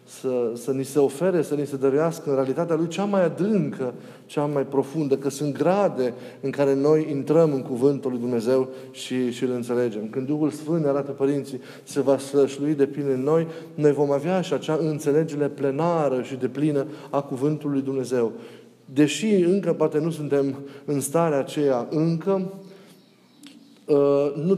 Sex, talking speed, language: male, 165 wpm, Romanian